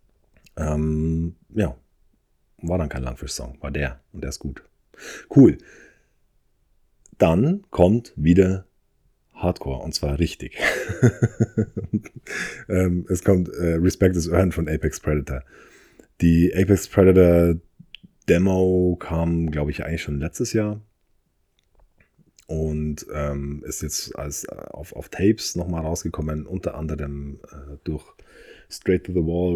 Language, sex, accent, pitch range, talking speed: German, male, German, 75-95 Hz, 120 wpm